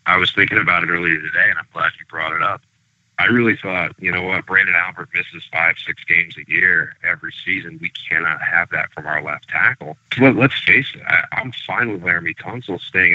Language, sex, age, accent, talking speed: English, male, 40-59, American, 220 wpm